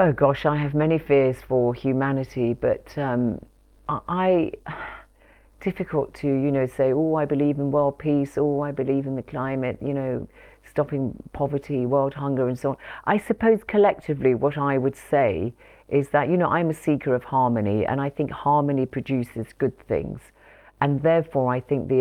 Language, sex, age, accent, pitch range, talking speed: English, female, 40-59, British, 120-145 Hz, 175 wpm